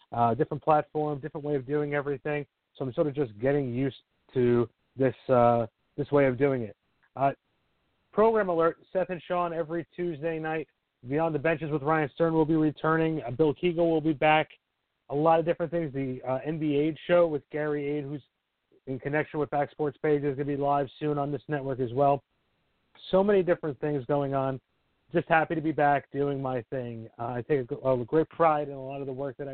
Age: 40-59